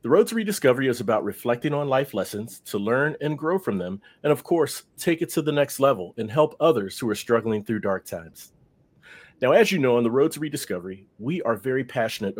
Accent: American